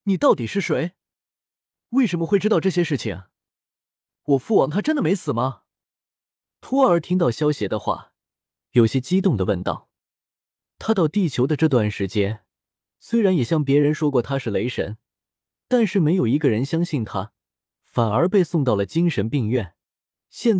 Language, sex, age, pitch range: Chinese, male, 20-39, 110-170 Hz